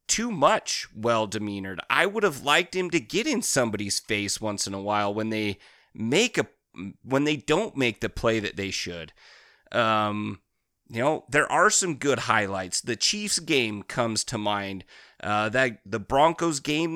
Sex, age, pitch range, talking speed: male, 30-49, 110-170 Hz, 175 wpm